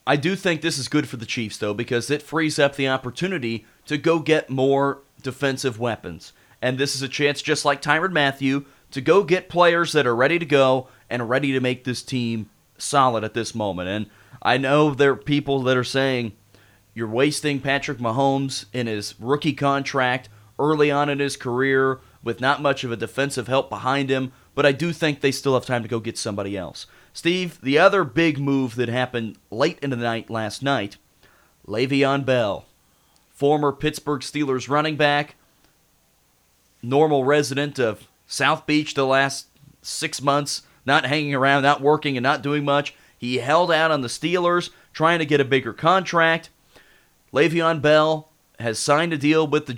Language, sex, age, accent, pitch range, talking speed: English, male, 30-49, American, 125-150 Hz, 185 wpm